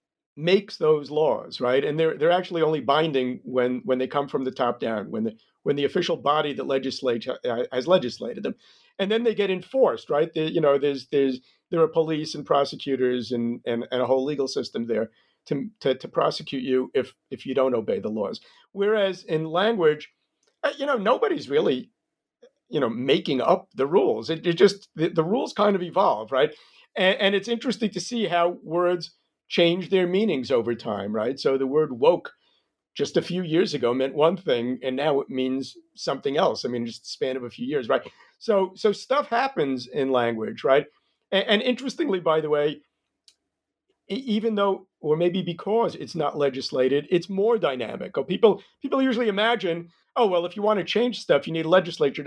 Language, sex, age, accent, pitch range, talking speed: English, male, 50-69, American, 135-210 Hz, 195 wpm